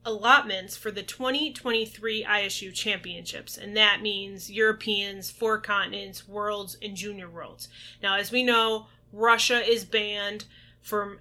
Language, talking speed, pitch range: English, 130 wpm, 205-240 Hz